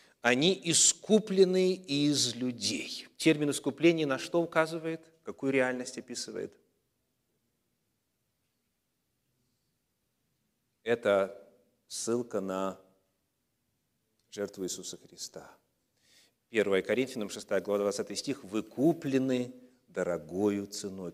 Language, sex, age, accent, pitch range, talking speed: Russian, male, 40-59, native, 105-140 Hz, 75 wpm